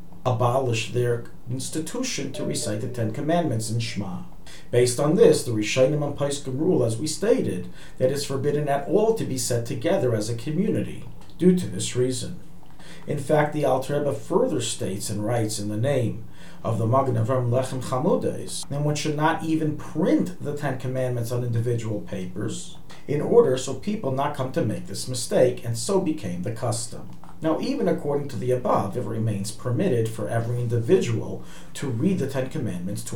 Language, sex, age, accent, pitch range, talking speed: English, male, 40-59, American, 115-155 Hz, 175 wpm